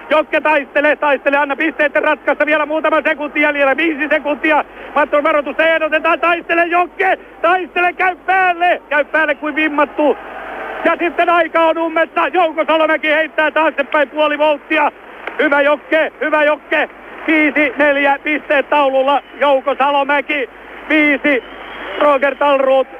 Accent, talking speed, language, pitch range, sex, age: native, 130 wpm, Finnish, 255-305 Hz, male, 60-79